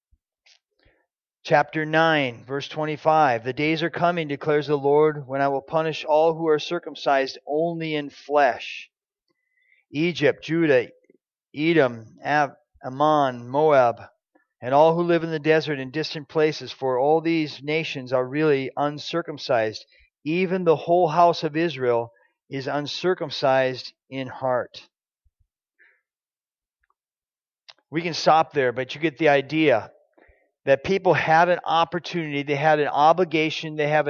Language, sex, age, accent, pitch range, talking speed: English, male, 40-59, American, 145-175 Hz, 130 wpm